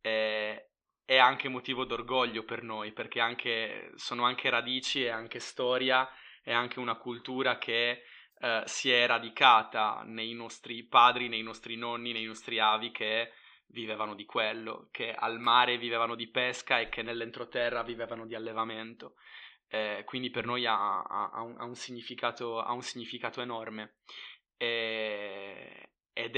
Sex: male